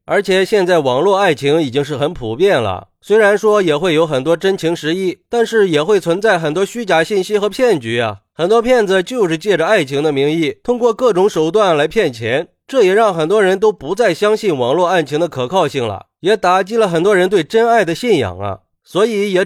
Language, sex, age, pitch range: Chinese, male, 30-49, 155-210 Hz